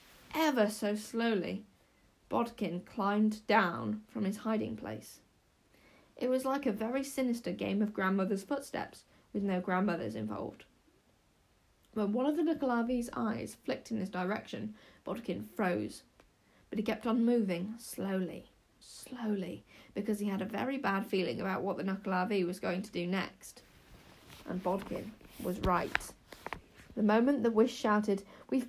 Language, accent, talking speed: English, British, 145 wpm